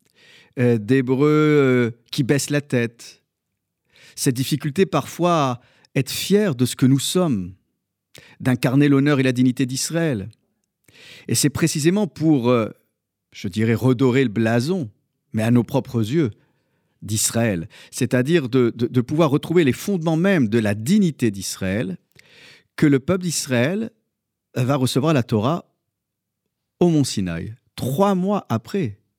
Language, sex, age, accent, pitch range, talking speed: French, male, 50-69, French, 110-150 Hz, 130 wpm